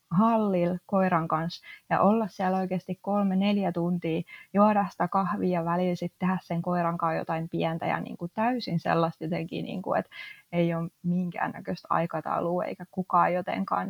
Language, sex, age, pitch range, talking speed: Finnish, female, 20-39, 165-185 Hz, 145 wpm